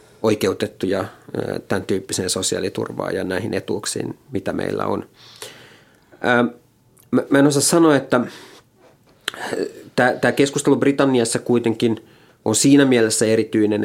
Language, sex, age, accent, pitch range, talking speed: Finnish, male, 30-49, native, 105-120 Hz, 100 wpm